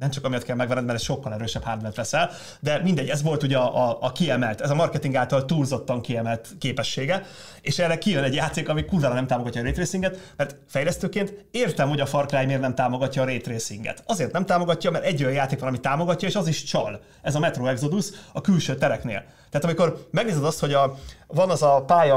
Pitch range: 130-170 Hz